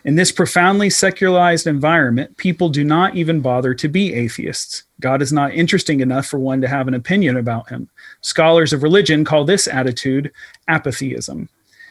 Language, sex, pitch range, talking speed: English, male, 135-175 Hz, 165 wpm